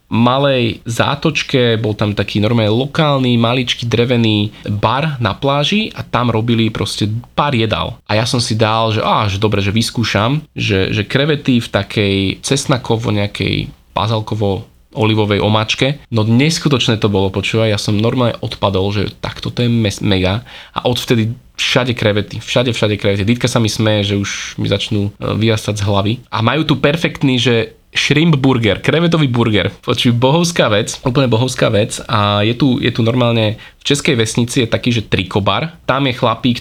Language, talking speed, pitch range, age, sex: Slovak, 165 wpm, 105-130 Hz, 20-39, male